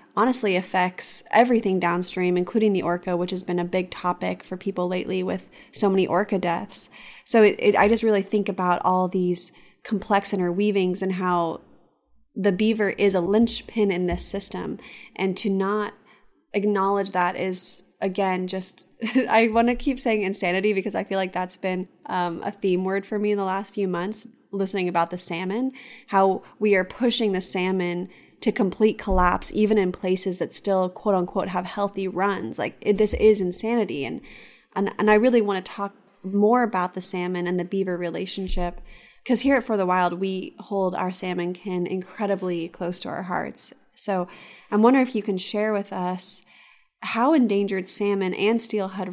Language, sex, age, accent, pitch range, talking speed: English, female, 20-39, American, 180-210 Hz, 180 wpm